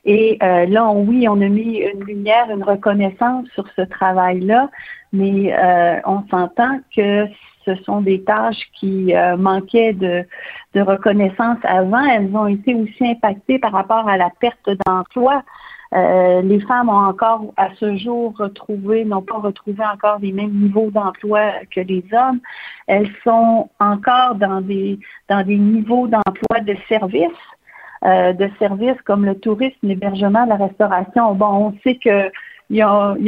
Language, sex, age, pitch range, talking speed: French, female, 50-69, 195-230 Hz, 150 wpm